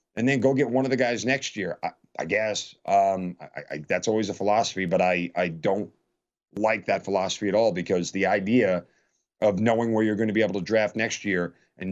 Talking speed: 215 wpm